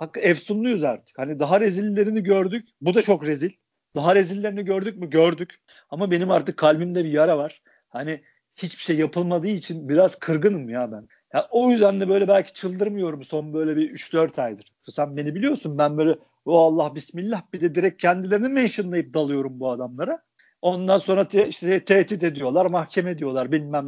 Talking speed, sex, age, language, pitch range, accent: 175 wpm, male, 50-69, Turkish, 160-210 Hz, native